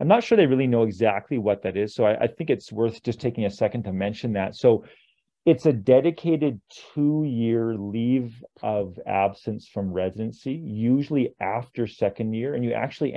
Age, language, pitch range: 40-59, English, 100-125 Hz